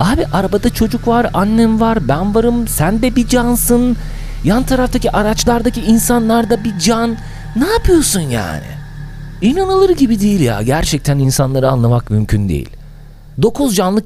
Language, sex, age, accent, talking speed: Turkish, male, 40-59, native, 135 wpm